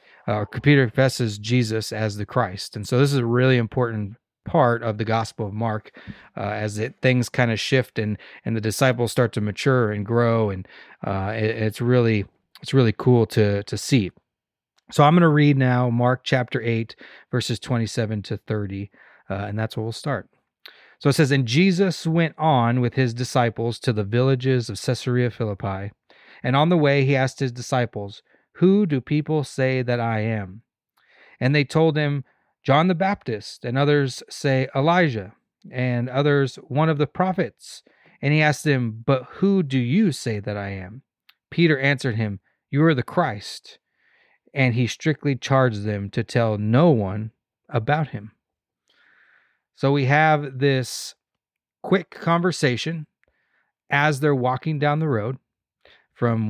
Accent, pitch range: American, 110-145 Hz